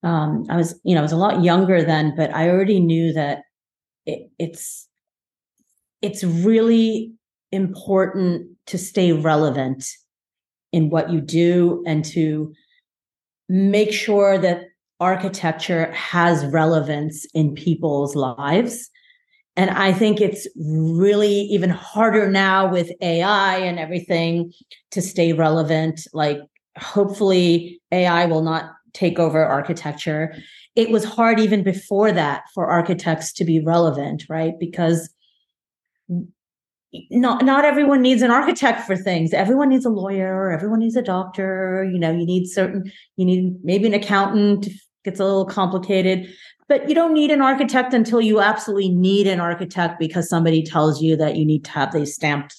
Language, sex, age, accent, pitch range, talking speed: English, female, 30-49, American, 160-200 Hz, 145 wpm